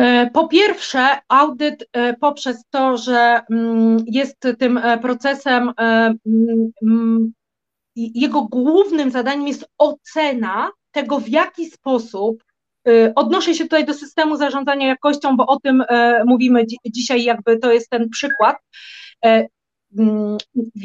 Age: 30-49